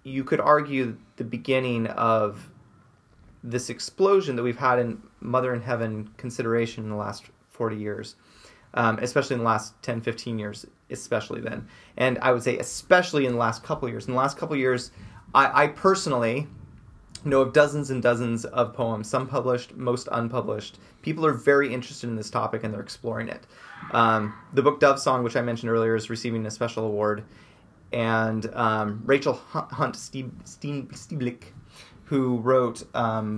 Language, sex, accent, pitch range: English, male, American, 115-130 Hz